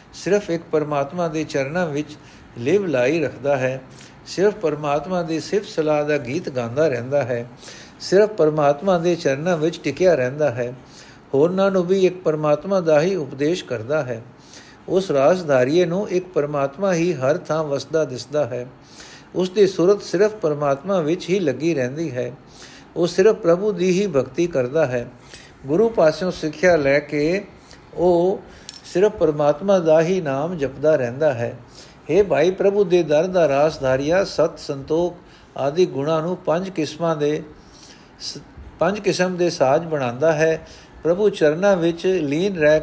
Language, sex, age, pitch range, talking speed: Punjabi, male, 60-79, 145-180 Hz, 150 wpm